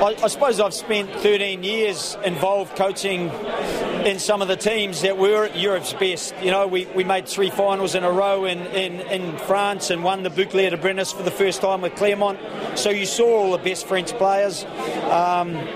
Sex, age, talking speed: male, 40-59, 200 wpm